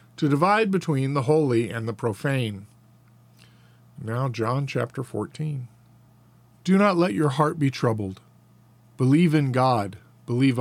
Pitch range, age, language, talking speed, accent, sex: 120-150 Hz, 40-59, English, 130 wpm, American, male